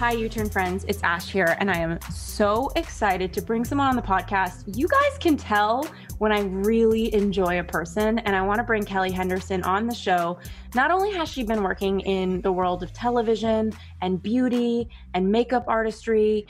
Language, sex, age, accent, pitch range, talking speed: English, female, 20-39, American, 185-225 Hz, 195 wpm